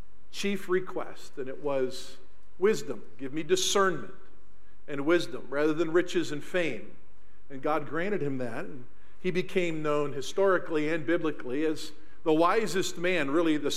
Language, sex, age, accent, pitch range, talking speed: English, male, 50-69, American, 150-205 Hz, 150 wpm